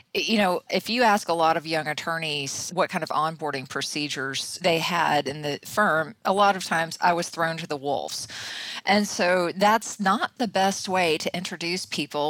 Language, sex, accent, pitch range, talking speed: English, female, American, 150-180 Hz, 195 wpm